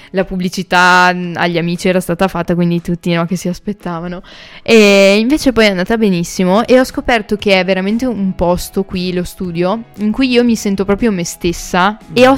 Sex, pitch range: female, 185-220 Hz